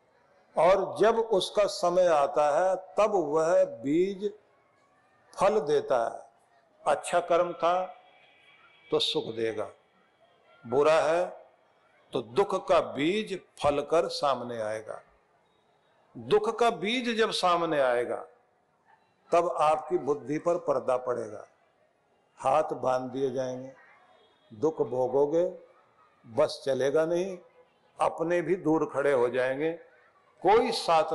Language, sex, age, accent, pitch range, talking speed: Hindi, male, 60-79, native, 145-205 Hz, 110 wpm